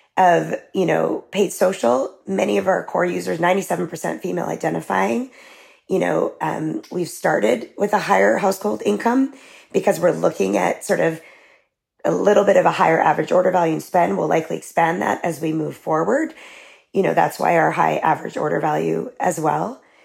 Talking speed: 175 wpm